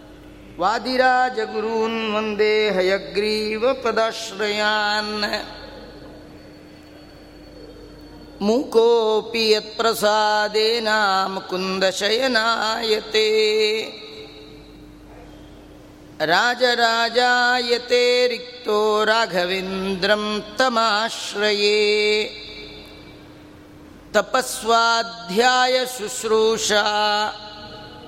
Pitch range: 210-230 Hz